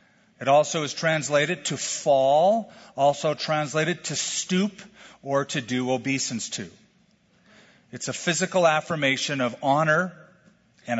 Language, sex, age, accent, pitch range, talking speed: English, male, 50-69, American, 135-185 Hz, 120 wpm